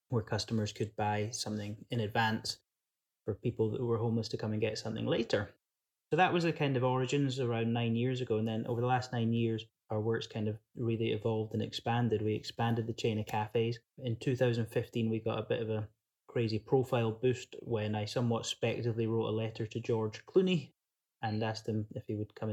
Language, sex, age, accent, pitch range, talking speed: English, male, 20-39, British, 110-120 Hz, 210 wpm